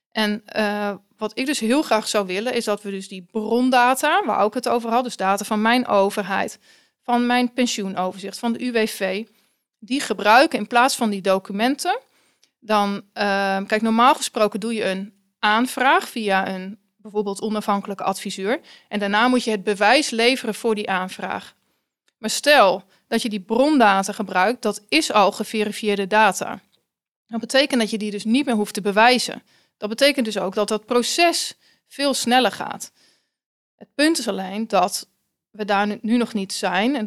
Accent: Dutch